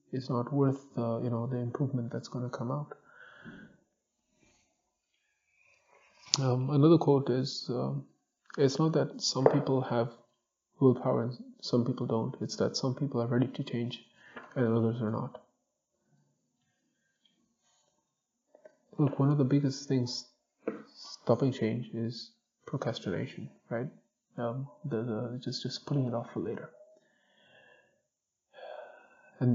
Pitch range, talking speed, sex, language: 120-145 Hz, 130 wpm, male, English